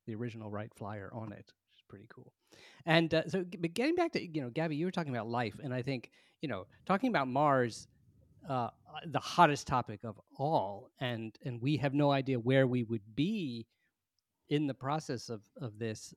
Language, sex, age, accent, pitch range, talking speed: English, male, 30-49, American, 110-150 Hz, 205 wpm